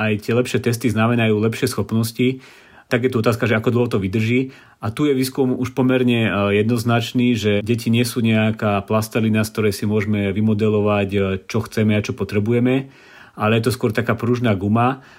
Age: 40-59